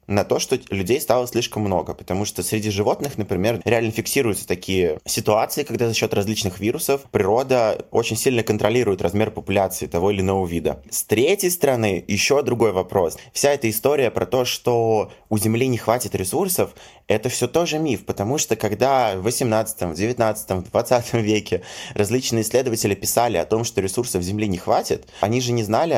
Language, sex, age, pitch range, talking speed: Russian, male, 20-39, 100-125 Hz, 170 wpm